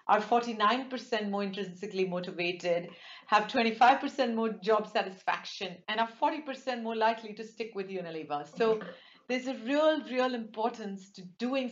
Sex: female